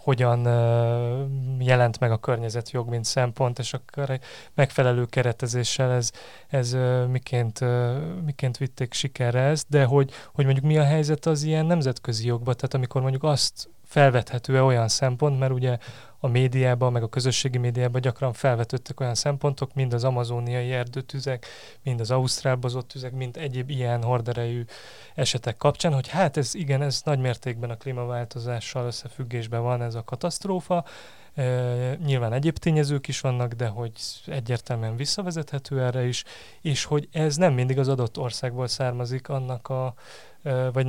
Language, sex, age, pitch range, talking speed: Hungarian, male, 20-39, 120-135 Hz, 145 wpm